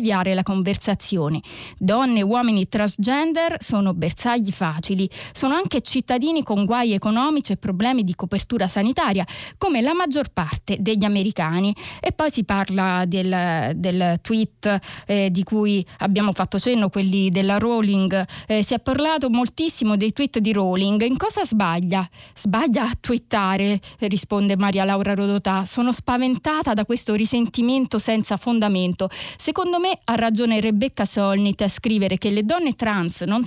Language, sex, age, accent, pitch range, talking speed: Italian, female, 20-39, native, 195-250 Hz, 145 wpm